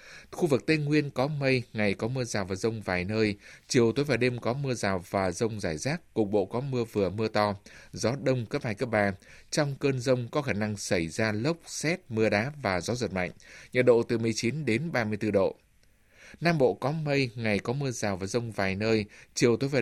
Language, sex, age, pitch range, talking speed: Vietnamese, male, 20-39, 105-130 Hz, 230 wpm